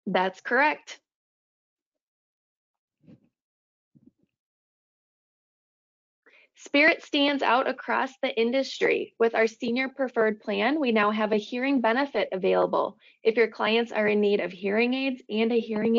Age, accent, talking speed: 20-39, American, 120 wpm